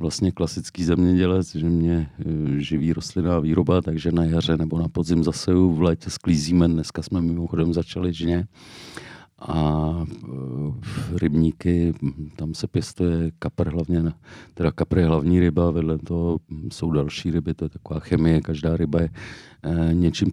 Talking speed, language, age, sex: 145 wpm, Czech, 40-59, male